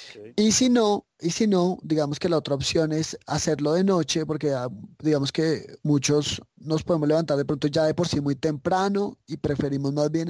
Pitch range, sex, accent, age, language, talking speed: 150-185 Hz, male, Colombian, 20-39, Spanish, 185 wpm